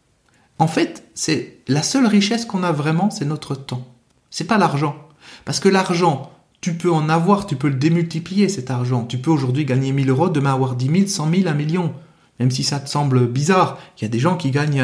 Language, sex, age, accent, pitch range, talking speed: French, male, 40-59, French, 145-205 Hz, 225 wpm